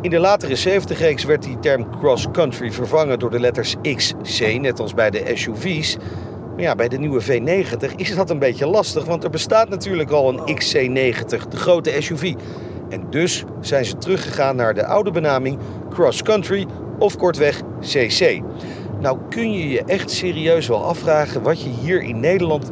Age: 40-59